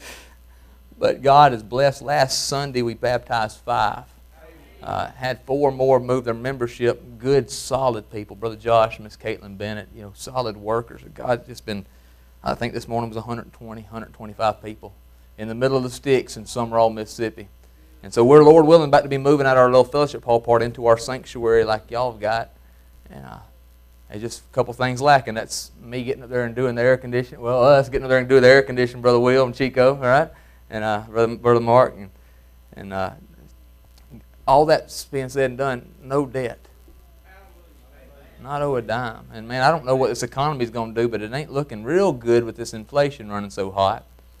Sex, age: male, 30-49